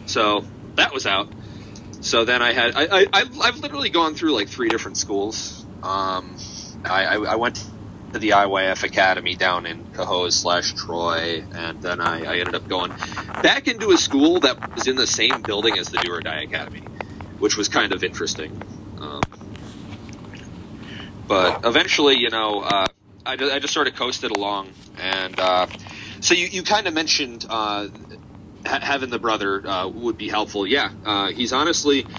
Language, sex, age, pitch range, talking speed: English, male, 30-49, 95-115 Hz, 175 wpm